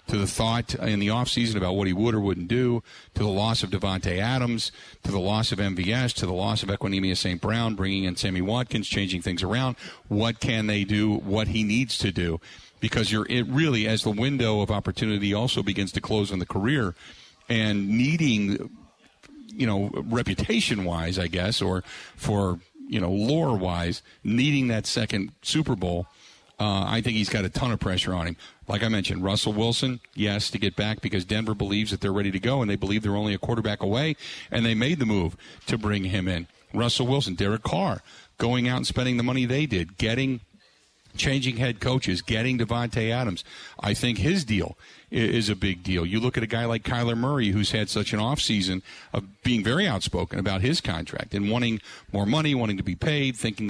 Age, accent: 50-69, American